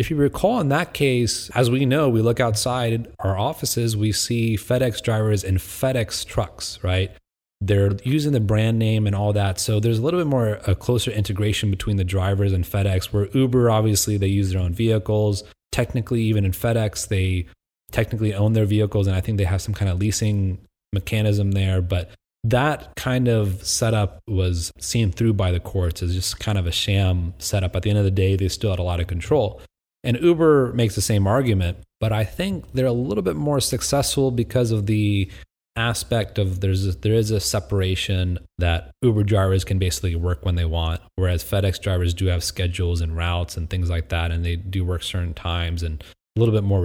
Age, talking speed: 30-49, 205 wpm